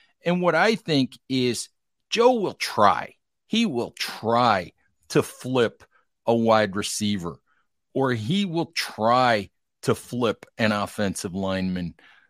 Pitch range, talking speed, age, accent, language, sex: 105-140 Hz, 120 wpm, 50-69, American, English, male